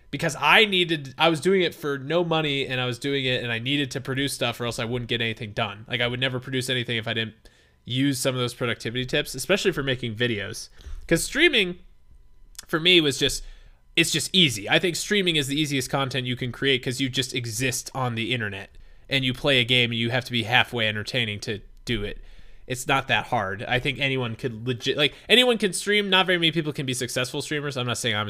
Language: English